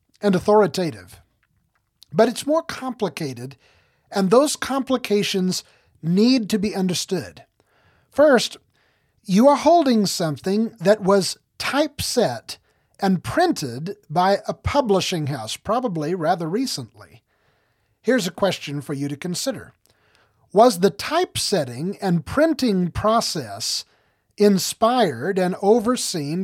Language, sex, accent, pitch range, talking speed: English, male, American, 160-220 Hz, 105 wpm